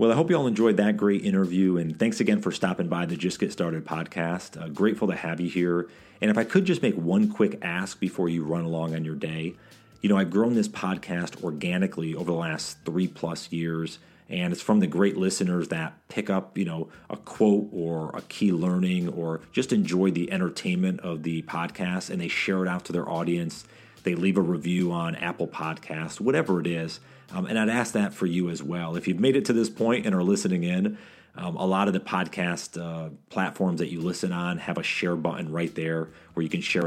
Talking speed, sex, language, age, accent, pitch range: 230 wpm, male, English, 40-59, American, 85-100 Hz